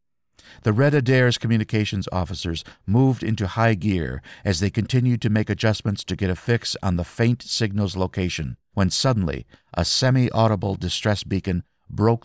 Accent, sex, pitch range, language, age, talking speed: American, male, 90-125 Hz, English, 50-69, 150 wpm